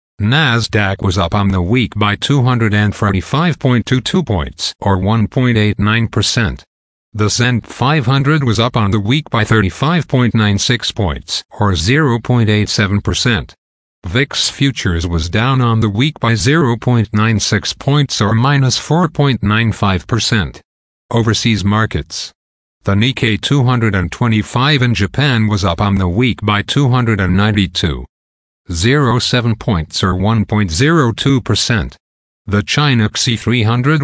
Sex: male